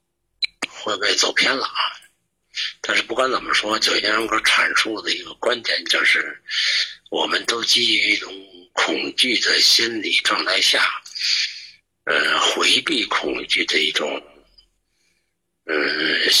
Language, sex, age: Chinese, male, 60-79